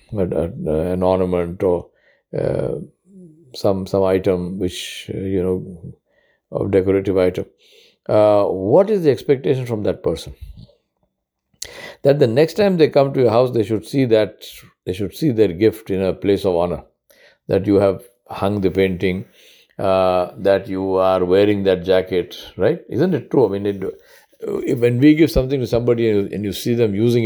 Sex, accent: male, Indian